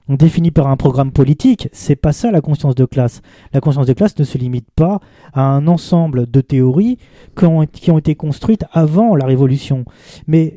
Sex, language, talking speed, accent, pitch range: male, French, 195 wpm, French, 135-180 Hz